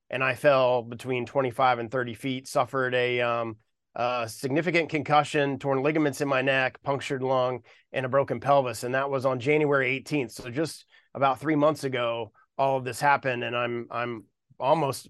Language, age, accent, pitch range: English, 30-49, American, 130-160 Hz